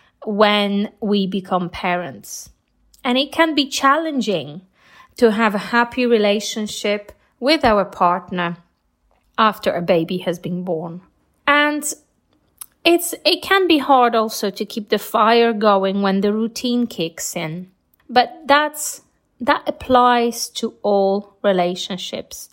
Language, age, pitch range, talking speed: English, 30-49, 195-275 Hz, 125 wpm